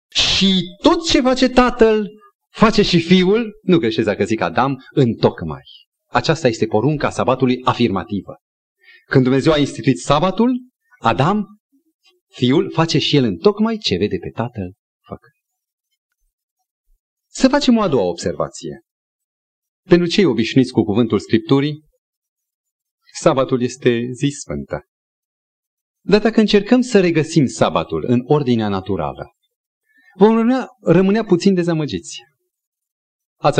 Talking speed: 120 wpm